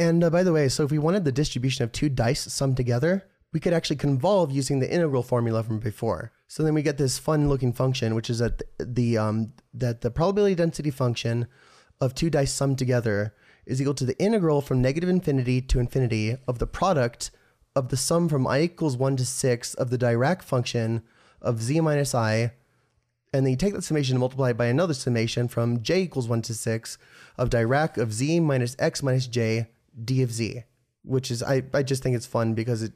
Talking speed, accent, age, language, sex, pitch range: 210 wpm, American, 20-39, English, male, 120-145 Hz